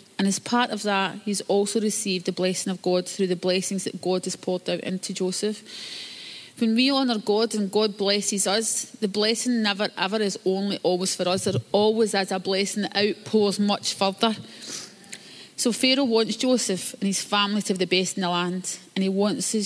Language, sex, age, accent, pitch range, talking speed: English, female, 30-49, British, 190-215 Hz, 200 wpm